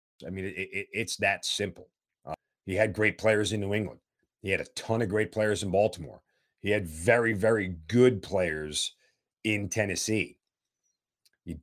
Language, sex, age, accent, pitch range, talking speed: English, male, 40-59, American, 95-130 Hz, 160 wpm